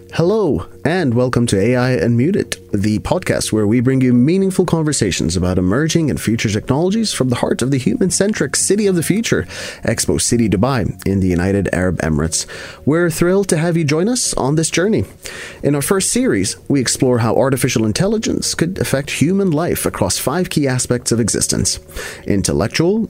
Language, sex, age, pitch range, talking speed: English, male, 30-49, 105-170 Hz, 175 wpm